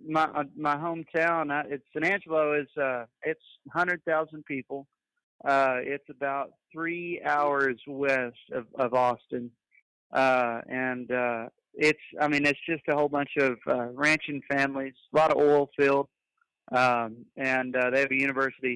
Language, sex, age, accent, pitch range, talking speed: English, male, 40-59, American, 125-145 Hz, 155 wpm